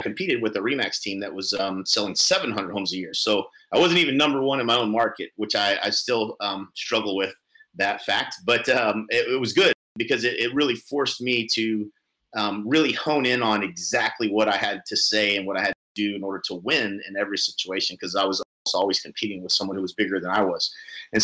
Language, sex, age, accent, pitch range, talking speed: English, male, 30-49, American, 105-125 Hz, 235 wpm